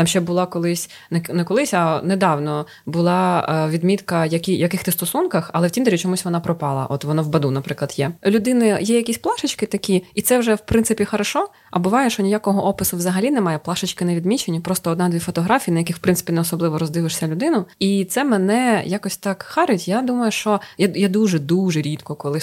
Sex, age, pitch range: female, 20-39, 165-200 Hz